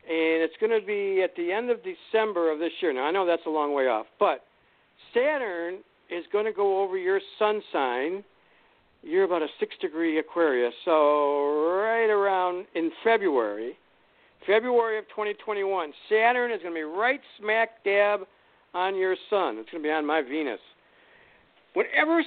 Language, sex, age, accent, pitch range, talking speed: English, male, 60-79, American, 165-240 Hz, 170 wpm